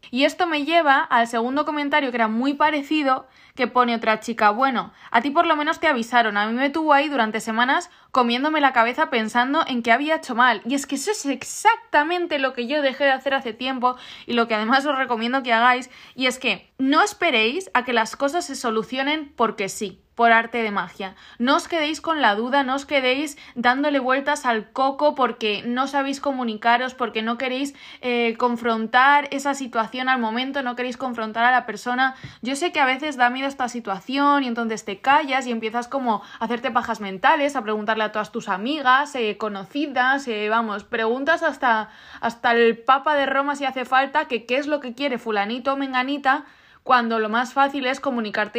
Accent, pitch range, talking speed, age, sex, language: Spanish, 225-275 Hz, 205 wpm, 20-39, female, Spanish